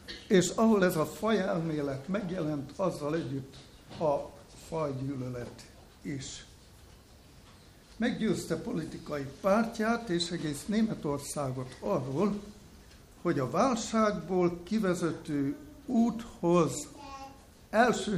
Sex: male